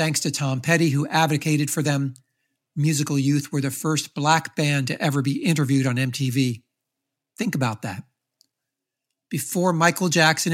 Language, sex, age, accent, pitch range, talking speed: English, male, 60-79, American, 135-155 Hz, 155 wpm